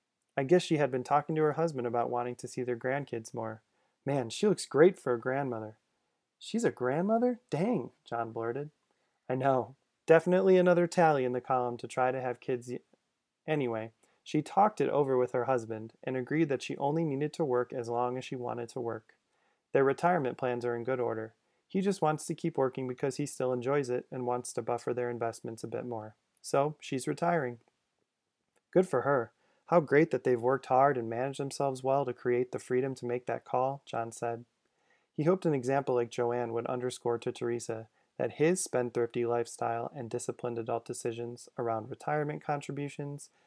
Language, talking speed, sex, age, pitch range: English, 190 wpm, male, 30-49, 120-140 Hz